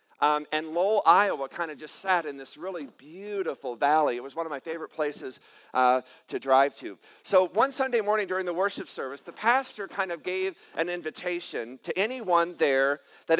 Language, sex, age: English, male, 50-69